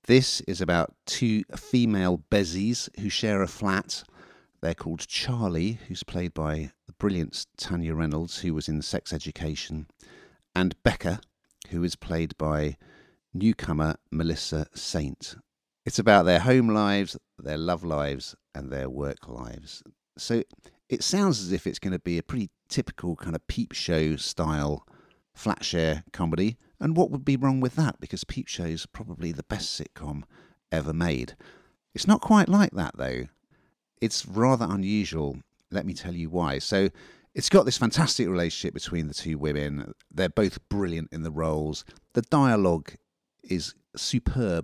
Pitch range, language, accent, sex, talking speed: 80-115 Hz, English, British, male, 155 wpm